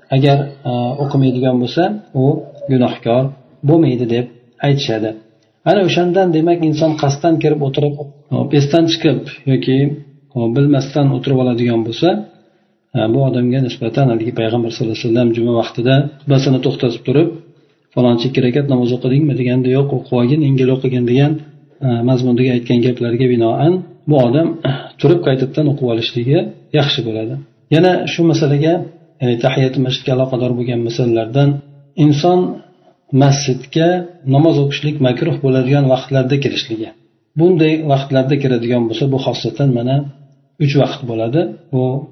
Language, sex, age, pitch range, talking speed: Russian, male, 40-59, 125-150 Hz, 125 wpm